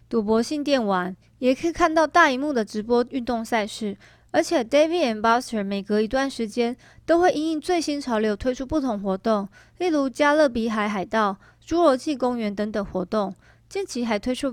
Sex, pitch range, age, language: female, 220-285 Hz, 20-39, Chinese